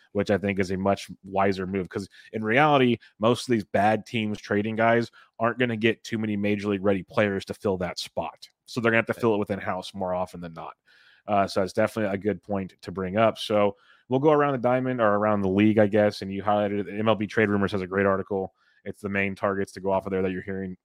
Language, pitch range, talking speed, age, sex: English, 100-115 Hz, 255 wpm, 30-49, male